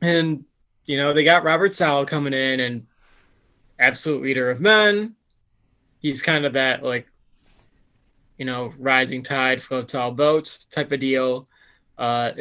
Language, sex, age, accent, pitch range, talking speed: English, male, 20-39, American, 120-155 Hz, 145 wpm